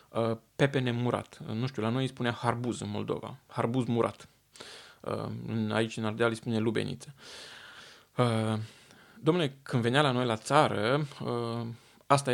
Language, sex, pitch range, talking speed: Romanian, male, 110-140 Hz, 130 wpm